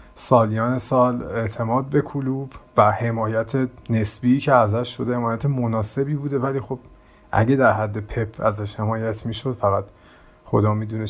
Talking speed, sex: 145 wpm, male